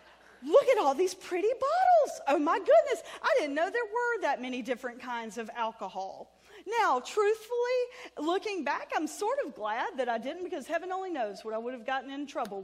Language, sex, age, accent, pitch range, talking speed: English, female, 40-59, American, 220-325 Hz, 200 wpm